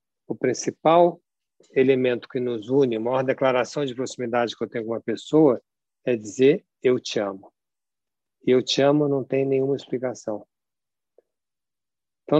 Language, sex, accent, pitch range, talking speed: Portuguese, male, Brazilian, 120-145 Hz, 150 wpm